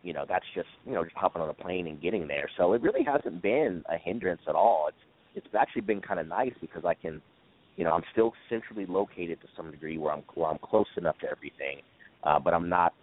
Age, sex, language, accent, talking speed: 30-49, male, English, American, 250 wpm